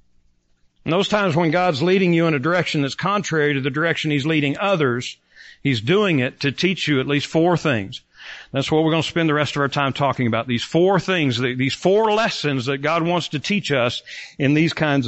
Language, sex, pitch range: English, male, 120-170 Hz